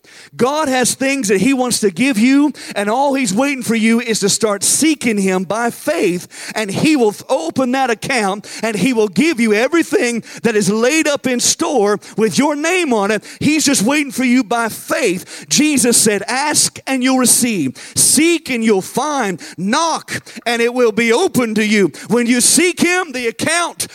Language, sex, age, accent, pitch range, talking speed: English, male, 50-69, American, 190-250 Hz, 190 wpm